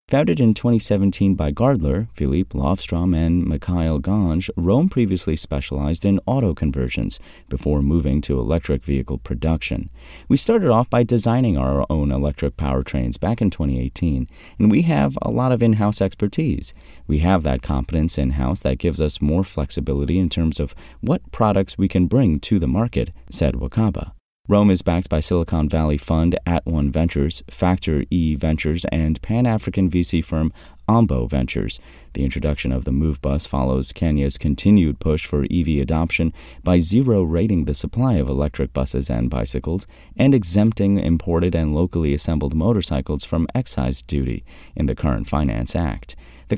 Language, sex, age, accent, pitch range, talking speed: English, male, 30-49, American, 70-95 Hz, 155 wpm